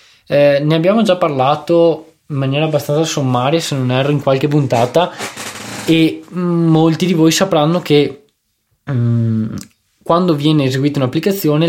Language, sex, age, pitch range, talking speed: Italian, male, 20-39, 130-170 Hz, 135 wpm